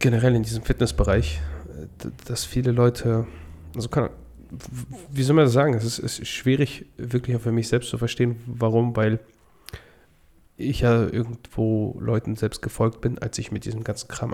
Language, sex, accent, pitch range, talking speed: German, male, German, 110-125 Hz, 165 wpm